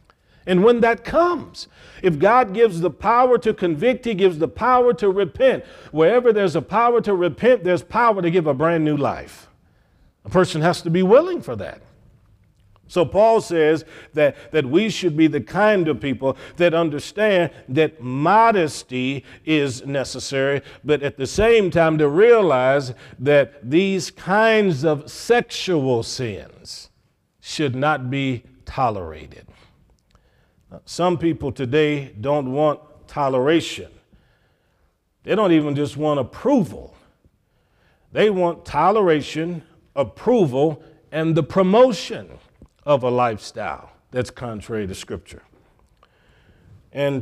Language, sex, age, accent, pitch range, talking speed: English, male, 50-69, American, 135-185 Hz, 130 wpm